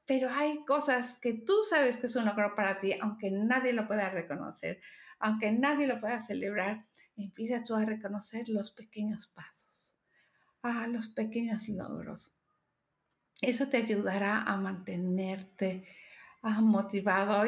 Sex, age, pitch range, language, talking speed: female, 50-69, 220-275 Hz, Spanish, 135 wpm